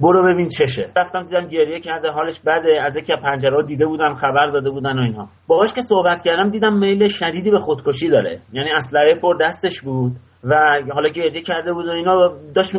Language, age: Persian, 30-49